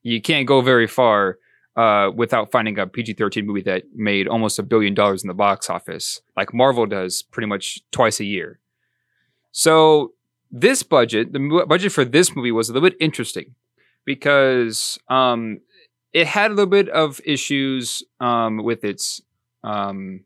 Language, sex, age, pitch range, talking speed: English, male, 20-39, 110-140 Hz, 165 wpm